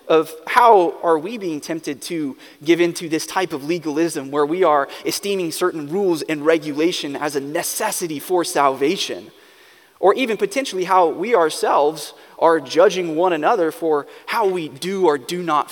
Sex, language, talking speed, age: male, English, 165 wpm, 20-39